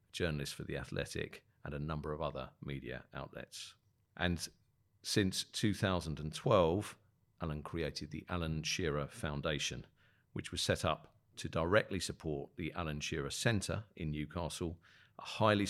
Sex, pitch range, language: male, 80-110 Hz, English